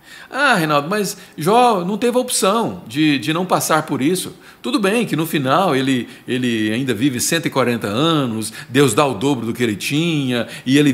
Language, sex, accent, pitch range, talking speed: Portuguese, male, Brazilian, 130-200 Hz, 190 wpm